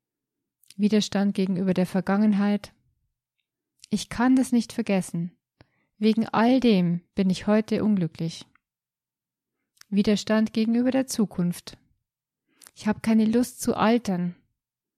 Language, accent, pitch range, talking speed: German, German, 175-225 Hz, 105 wpm